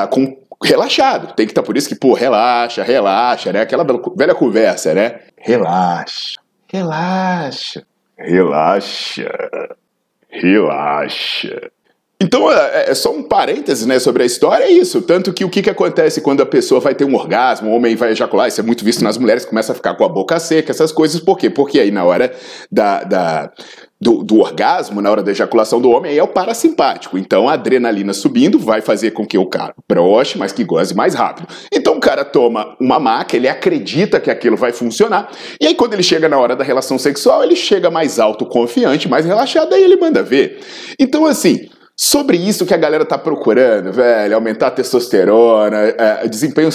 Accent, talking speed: Brazilian, 185 wpm